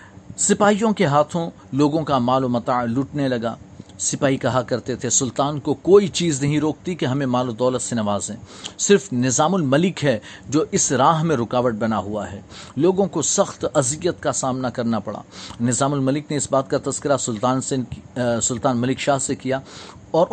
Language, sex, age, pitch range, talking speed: Urdu, male, 40-59, 125-160 Hz, 185 wpm